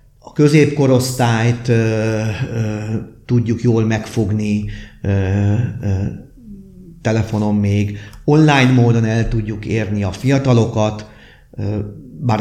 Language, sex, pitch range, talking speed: Hungarian, male, 105-130 Hz, 75 wpm